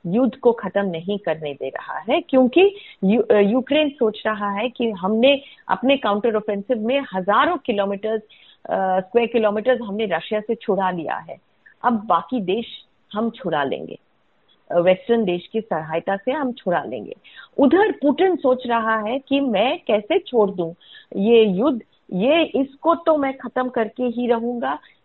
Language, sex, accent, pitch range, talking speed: Hindi, female, native, 200-265 Hz, 155 wpm